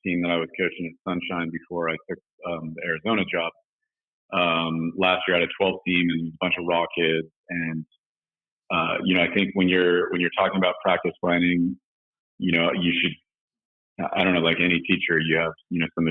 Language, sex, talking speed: English, male, 210 wpm